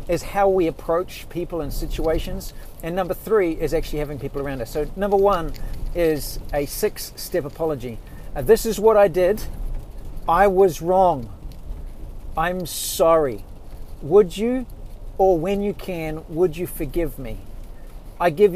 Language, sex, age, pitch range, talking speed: English, male, 50-69, 125-180 Hz, 150 wpm